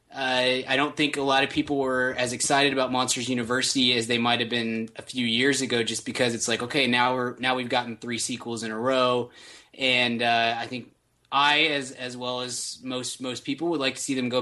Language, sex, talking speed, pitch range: English, male, 235 wpm, 120-140 Hz